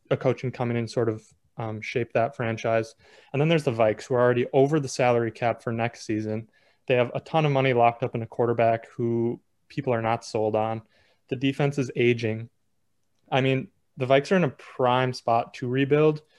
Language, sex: English, male